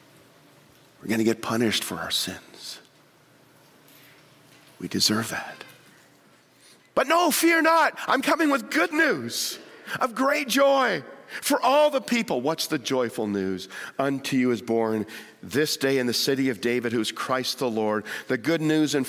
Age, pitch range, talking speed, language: 50-69, 115-185 Hz, 160 wpm, English